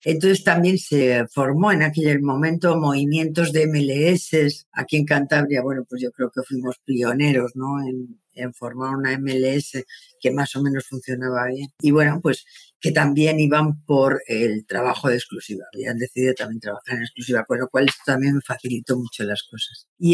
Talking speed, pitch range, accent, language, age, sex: 180 wpm, 125-150 Hz, Spanish, Spanish, 50-69, female